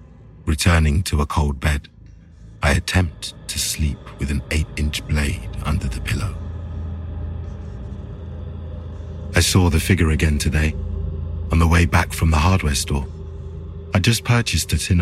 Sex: male